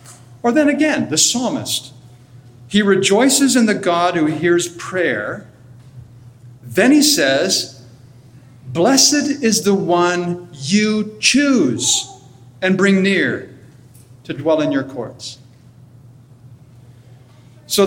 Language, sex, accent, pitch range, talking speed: English, male, American, 125-205 Hz, 105 wpm